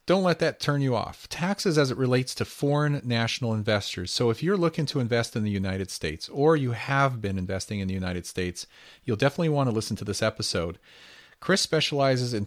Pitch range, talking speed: 105-135 Hz, 210 wpm